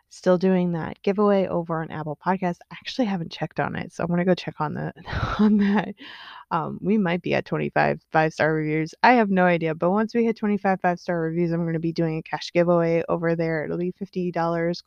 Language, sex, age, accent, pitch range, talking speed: English, female, 20-39, American, 165-195 Hz, 220 wpm